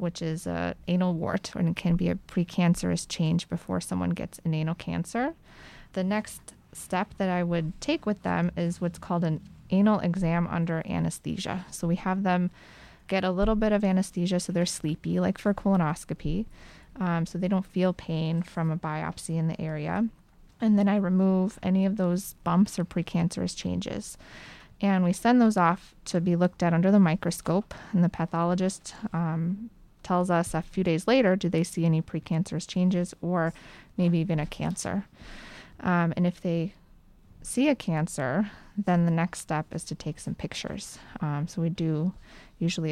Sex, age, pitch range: female, 20-39, 165-195 Hz